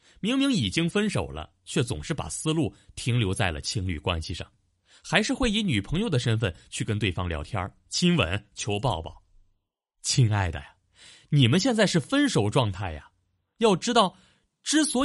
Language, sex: Chinese, male